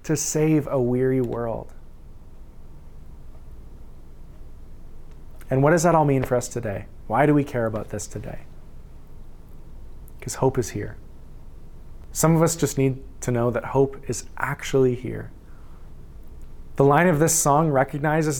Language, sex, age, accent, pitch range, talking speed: English, male, 20-39, American, 85-140 Hz, 140 wpm